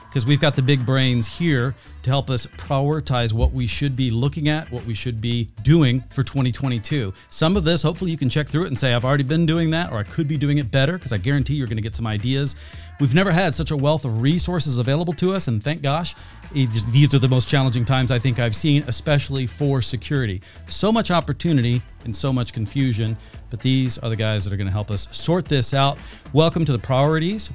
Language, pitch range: English, 115-145 Hz